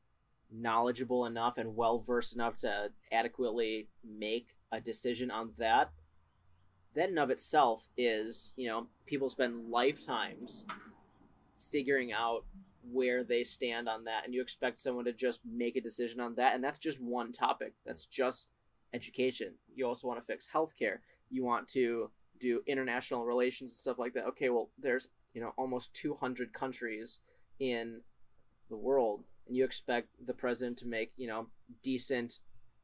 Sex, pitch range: male, 115-130 Hz